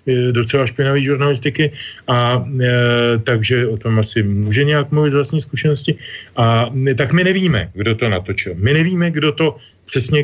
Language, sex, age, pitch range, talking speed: Slovak, male, 40-59, 110-140 Hz, 160 wpm